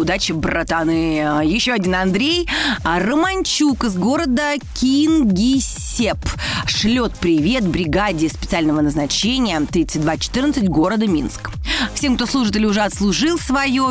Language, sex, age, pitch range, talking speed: Russian, female, 30-49, 175-245 Hz, 105 wpm